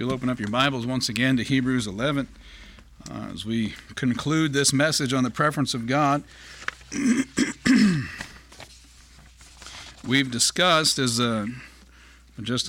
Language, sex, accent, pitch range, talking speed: English, male, American, 115-145 Hz, 125 wpm